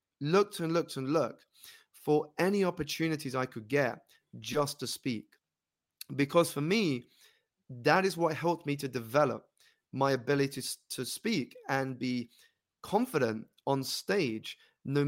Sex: male